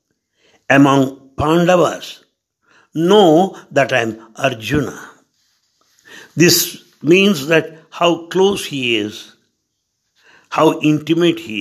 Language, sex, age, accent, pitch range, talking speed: English, male, 60-79, Indian, 135-180 Hz, 90 wpm